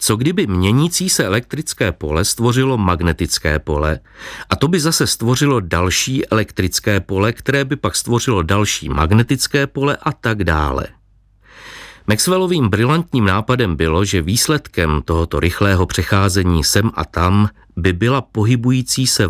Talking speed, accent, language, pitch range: 135 wpm, native, Czech, 90-120 Hz